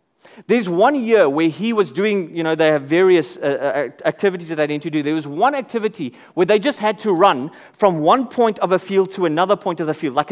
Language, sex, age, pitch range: English, male, 30-49, 170-255 Hz